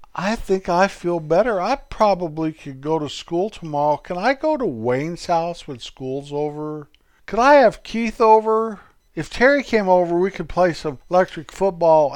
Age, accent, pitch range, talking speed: 60-79, American, 140-195 Hz, 180 wpm